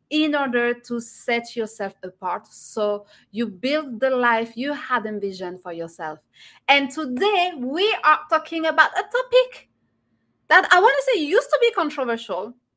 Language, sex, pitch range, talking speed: English, female, 220-295 Hz, 155 wpm